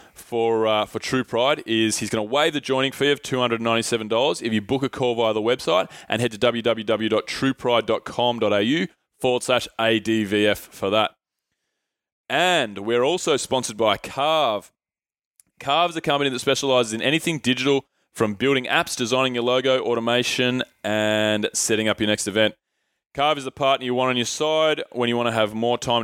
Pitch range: 110-135 Hz